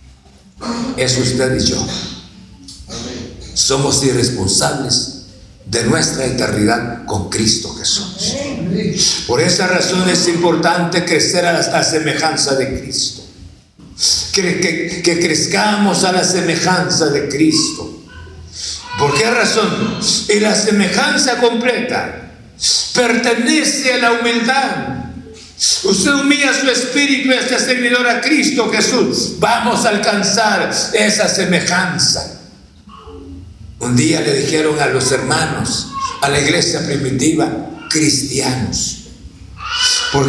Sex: male